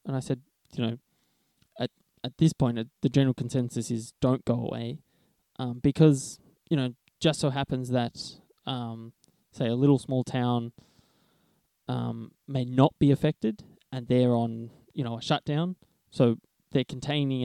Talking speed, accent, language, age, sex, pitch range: 160 wpm, Australian, English, 10-29, male, 120-145 Hz